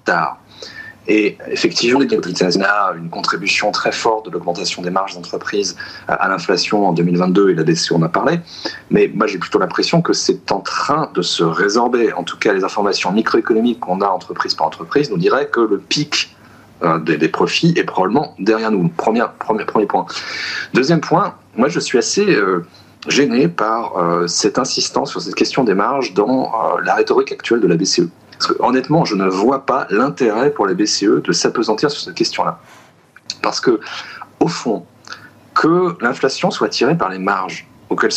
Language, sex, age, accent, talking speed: French, male, 30-49, French, 185 wpm